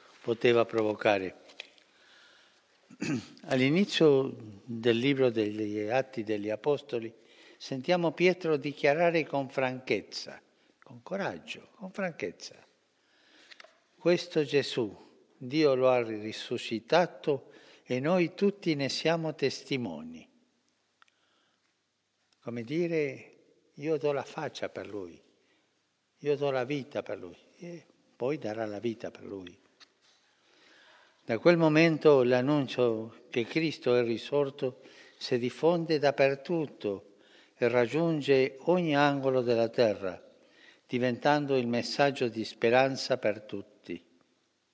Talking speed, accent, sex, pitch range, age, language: 100 wpm, native, male, 115-150 Hz, 60-79, Italian